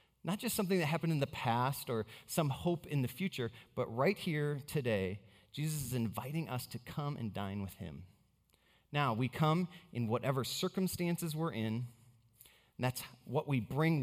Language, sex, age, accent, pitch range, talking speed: English, male, 30-49, American, 110-150 Hz, 175 wpm